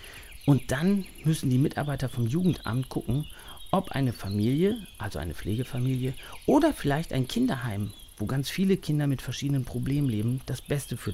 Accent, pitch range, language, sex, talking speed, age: German, 105-145 Hz, German, male, 155 wpm, 40-59